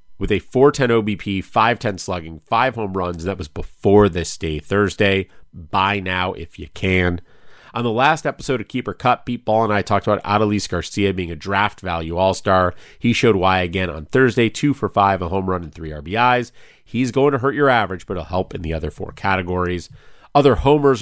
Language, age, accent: English, 30-49, American